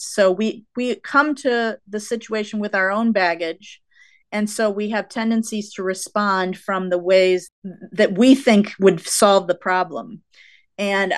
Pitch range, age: 180-215 Hz, 30-49